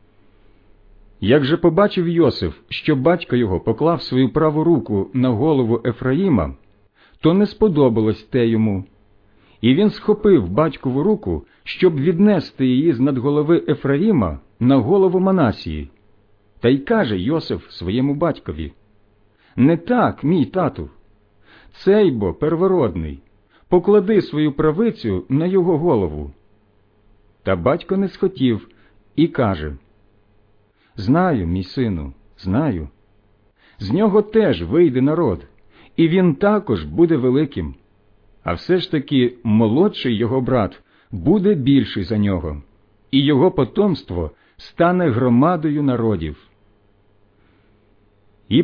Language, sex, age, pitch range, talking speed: Ukrainian, male, 50-69, 100-165 Hz, 110 wpm